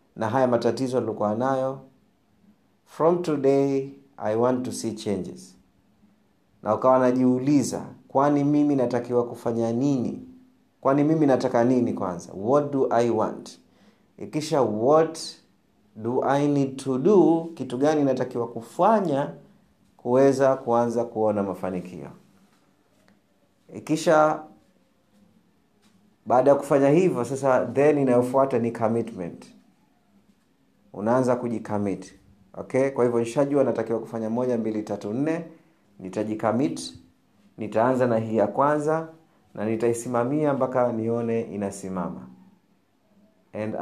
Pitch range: 110-145 Hz